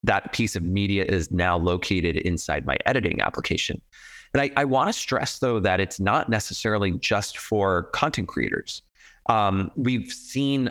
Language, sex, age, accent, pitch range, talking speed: English, male, 30-49, American, 95-115 Hz, 155 wpm